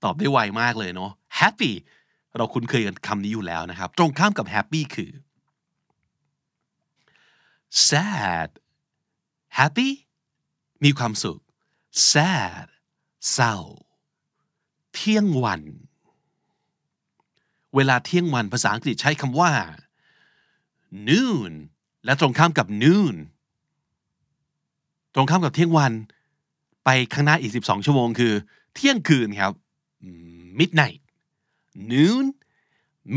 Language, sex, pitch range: Thai, male, 120-165 Hz